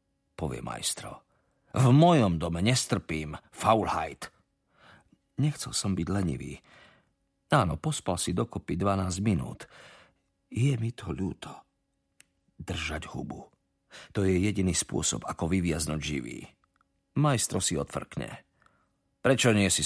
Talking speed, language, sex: 110 wpm, Slovak, male